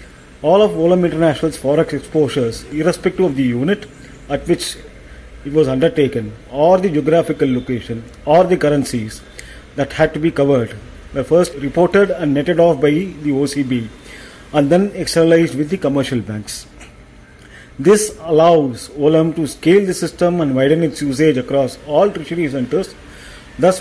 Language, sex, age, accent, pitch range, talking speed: English, male, 40-59, Indian, 135-170 Hz, 150 wpm